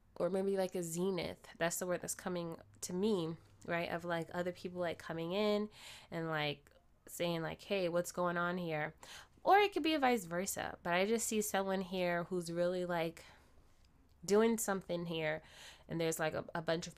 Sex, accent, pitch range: female, American, 170-205 Hz